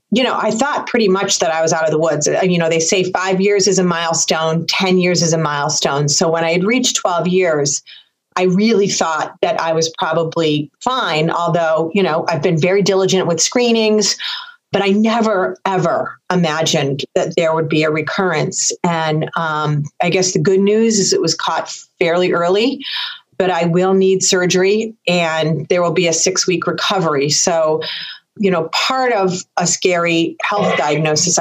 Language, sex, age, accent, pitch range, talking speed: English, female, 30-49, American, 160-195 Hz, 185 wpm